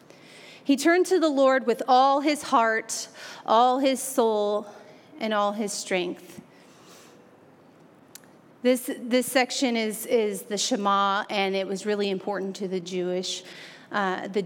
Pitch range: 205-250 Hz